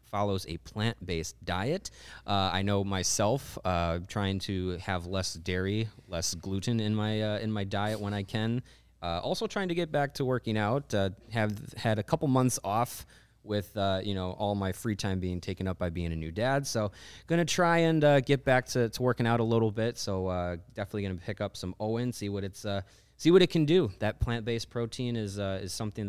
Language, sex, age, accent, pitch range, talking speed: English, male, 20-39, American, 95-120 Hz, 220 wpm